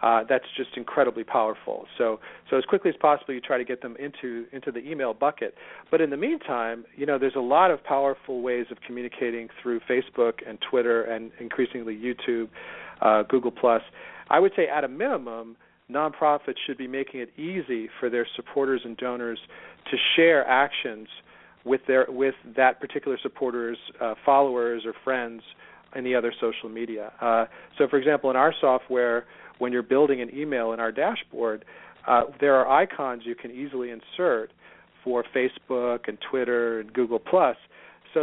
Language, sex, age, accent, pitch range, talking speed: English, male, 40-59, American, 120-140 Hz, 175 wpm